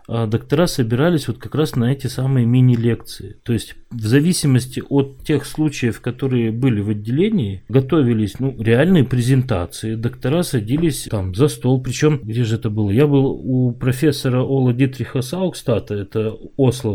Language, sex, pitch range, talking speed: Russian, male, 120-150 Hz, 155 wpm